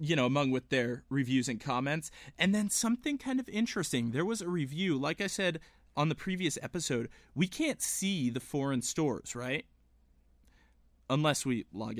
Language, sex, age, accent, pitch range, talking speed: English, male, 20-39, American, 125-170 Hz, 175 wpm